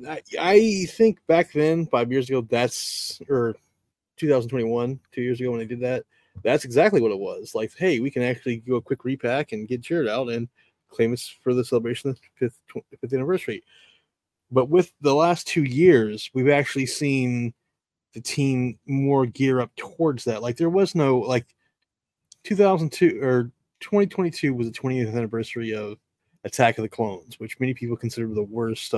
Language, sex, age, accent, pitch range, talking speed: English, male, 20-39, American, 115-150 Hz, 175 wpm